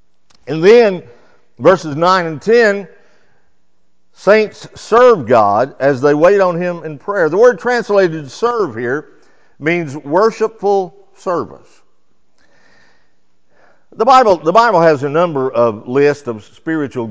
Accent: American